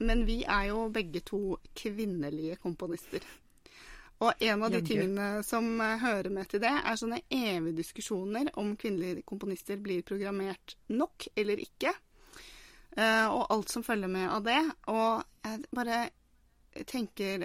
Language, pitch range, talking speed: English, 195-230 Hz, 150 wpm